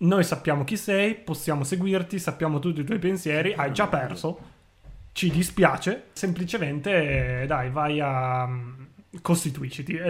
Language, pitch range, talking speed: Italian, 140-175 Hz, 130 wpm